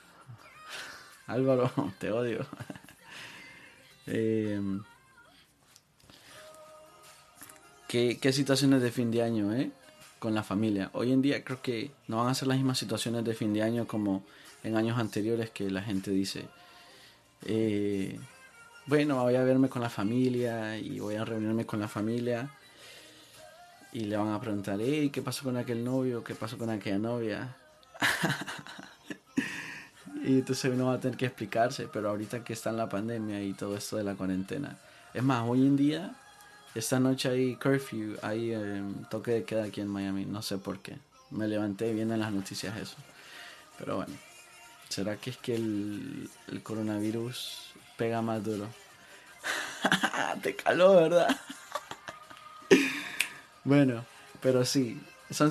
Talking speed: 150 wpm